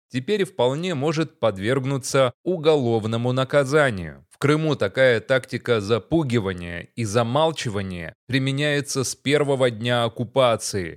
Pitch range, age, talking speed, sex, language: 110-135 Hz, 20-39, 100 wpm, male, Russian